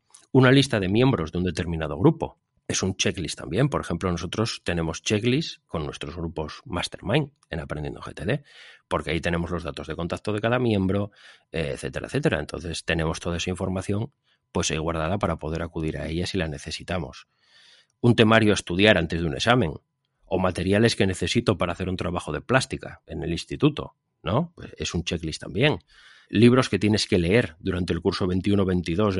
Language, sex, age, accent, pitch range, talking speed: Spanish, male, 30-49, Spanish, 85-110 Hz, 180 wpm